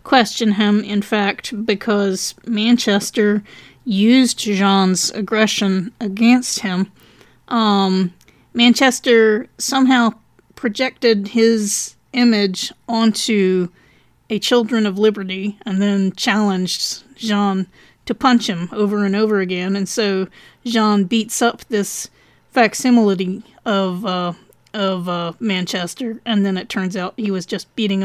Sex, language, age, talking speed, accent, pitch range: female, English, 30-49, 115 wpm, American, 180-225 Hz